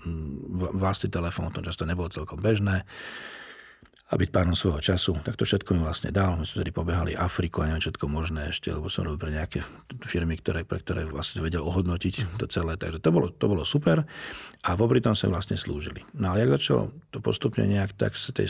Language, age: Slovak, 40-59